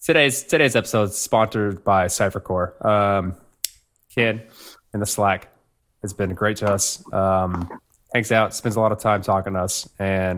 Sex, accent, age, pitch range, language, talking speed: male, American, 20-39, 95-115 Hz, English, 170 wpm